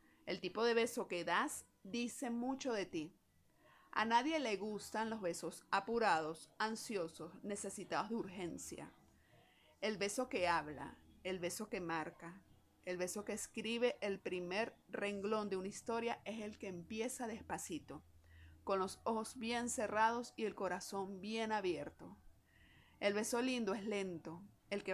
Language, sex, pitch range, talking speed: Spanish, female, 180-230 Hz, 145 wpm